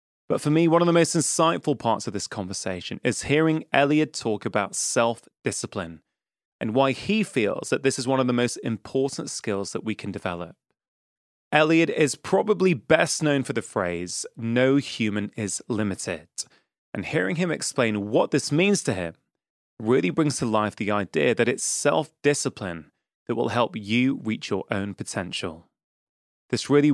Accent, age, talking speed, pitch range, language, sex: British, 20-39, 170 wpm, 105-145 Hz, English, male